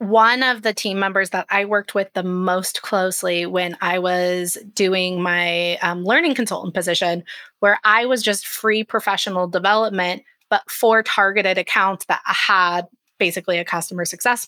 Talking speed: 160 wpm